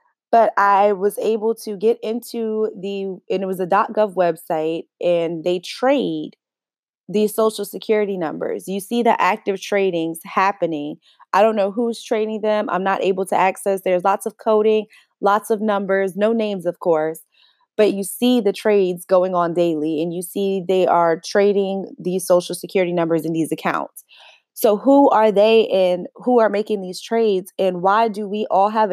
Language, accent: English, American